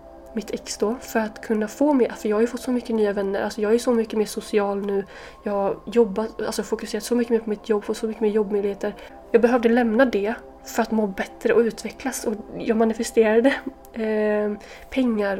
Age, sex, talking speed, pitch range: 20-39, female, 220 wpm, 200-235 Hz